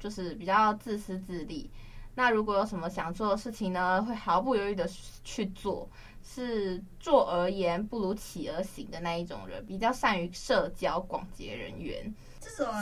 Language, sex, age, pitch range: Chinese, female, 20-39, 180-225 Hz